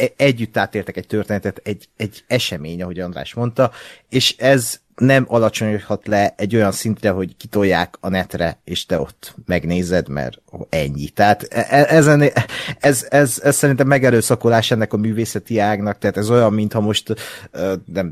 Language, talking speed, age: Hungarian, 150 wpm, 30-49